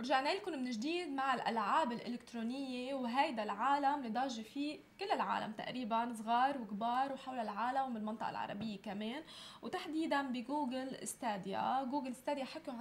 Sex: female